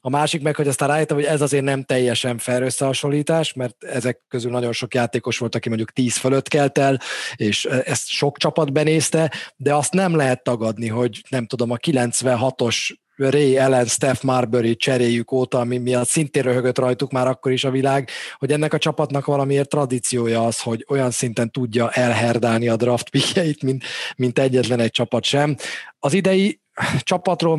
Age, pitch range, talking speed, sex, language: 30-49, 125-150 Hz, 175 wpm, male, Hungarian